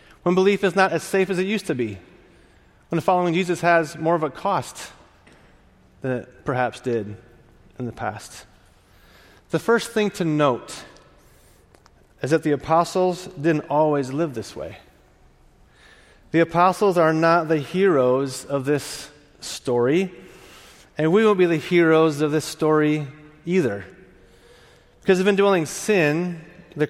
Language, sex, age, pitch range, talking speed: English, male, 30-49, 140-185 Hz, 145 wpm